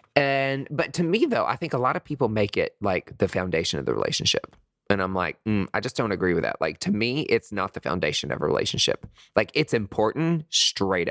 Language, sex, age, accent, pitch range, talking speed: English, male, 20-39, American, 95-125 Hz, 230 wpm